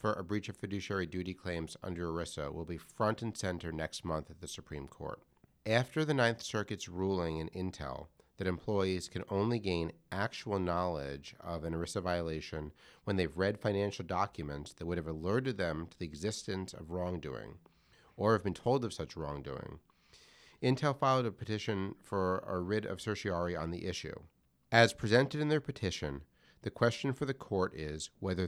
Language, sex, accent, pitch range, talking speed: English, male, American, 85-110 Hz, 175 wpm